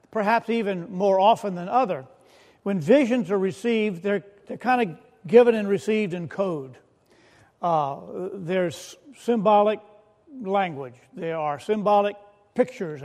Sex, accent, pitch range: male, American, 180-230 Hz